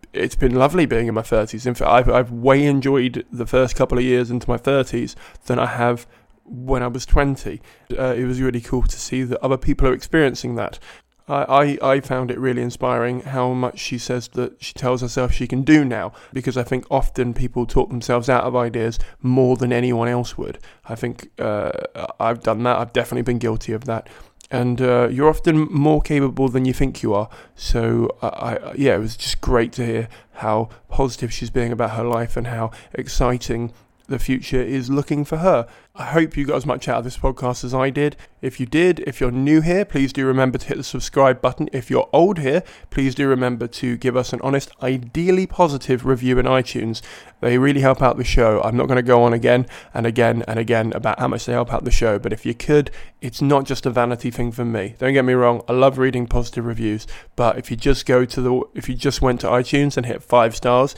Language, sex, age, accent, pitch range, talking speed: English, male, 20-39, British, 120-135 Hz, 230 wpm